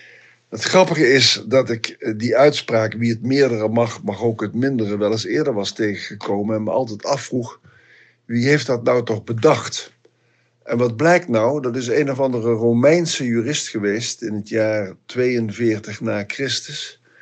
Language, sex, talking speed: Dutch, male, 165 wpm